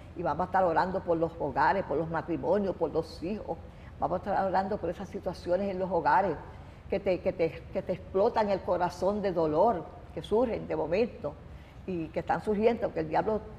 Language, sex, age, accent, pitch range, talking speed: Spanish, female, 50-69, American, 175-220 Hz, 205 wpm